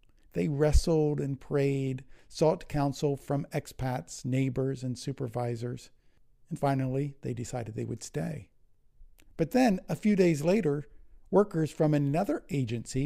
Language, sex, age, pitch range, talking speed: English, male, 50-69, 120-155 Hz, 130 wpm